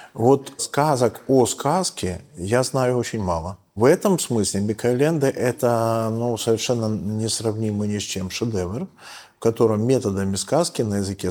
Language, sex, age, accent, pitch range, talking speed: Ukrainian, male, 40-59, native, 100-130 Hz, 145 wpm